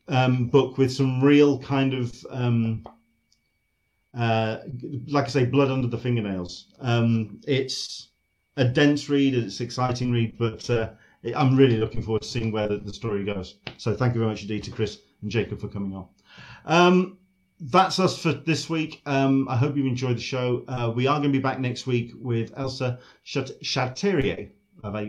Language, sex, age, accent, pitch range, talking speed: English, male, 40-59, British, 110-135 Hz, 180 wpm